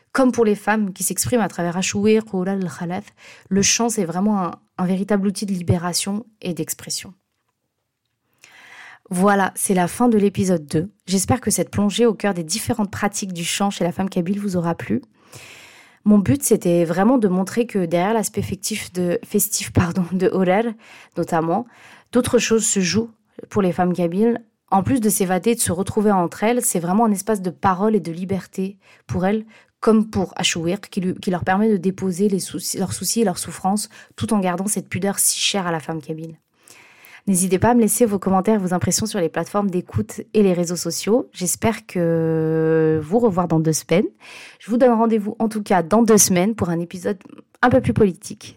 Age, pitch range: 30-49, 175-215 Hz